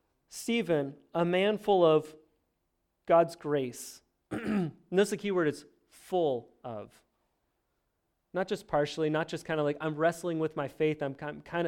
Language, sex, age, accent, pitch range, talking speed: English, male, 30-49, American, 135-175 Hz, 150 wpm